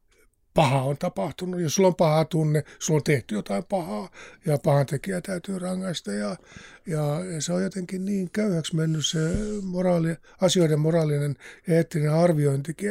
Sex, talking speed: male, 150 wpm